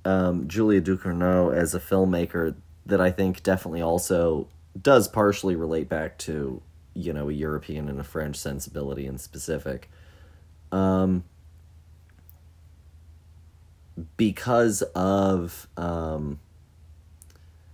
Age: 30-49